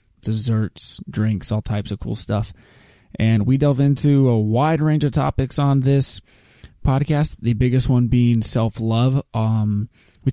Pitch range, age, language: 110-135 Hz, 20-39, English